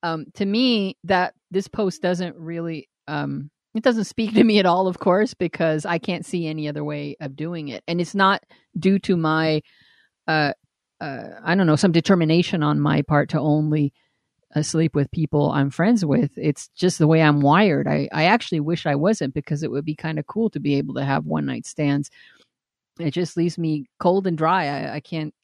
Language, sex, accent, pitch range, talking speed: English, female, American, 150-195 Hz, 210 wpm